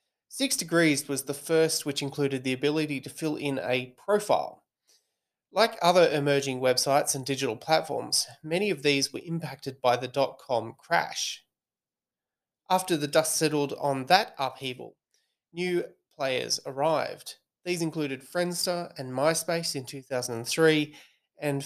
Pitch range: 140-165 Hz